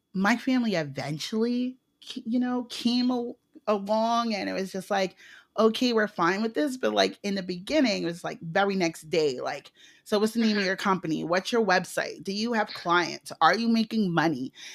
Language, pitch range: English, 180-230 Hz